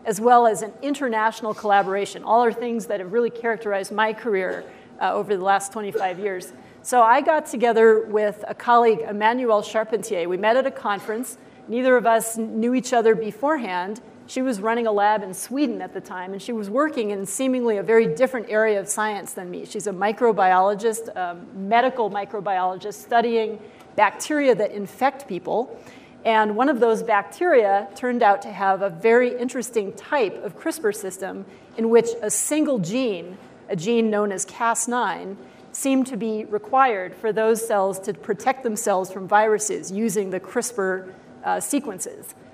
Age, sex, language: 40-59, female, English